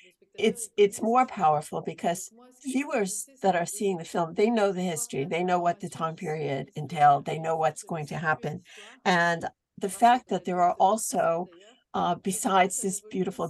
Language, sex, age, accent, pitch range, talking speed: English, female, 60-79, American, 170-215 Hz, 175 wpm